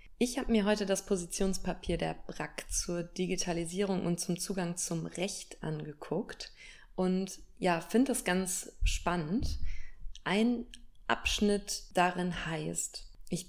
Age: 20-39